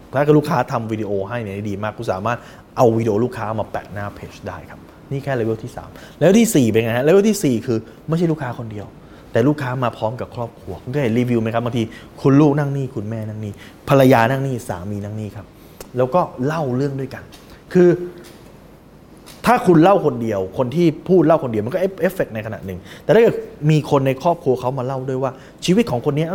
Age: 20-39